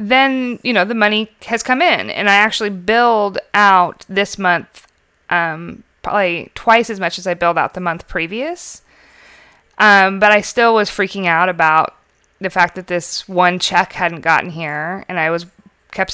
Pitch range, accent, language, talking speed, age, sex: 165-210 Hz, American, English, 180 wpm, 20-39, female